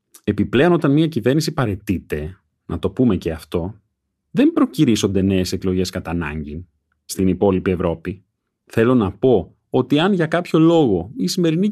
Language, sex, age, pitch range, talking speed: Greek, male, 30-49, 90-140 Hz, 150 wpm